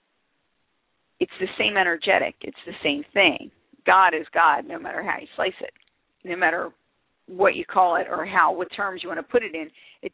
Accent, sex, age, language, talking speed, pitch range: American, female, 50-69, English, 200 wpm, 170-275 Hz